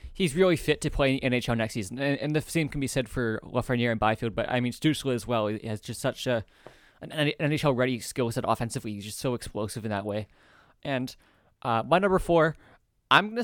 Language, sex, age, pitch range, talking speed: English, male, 20-39, 120-145 Hz, 220 wpm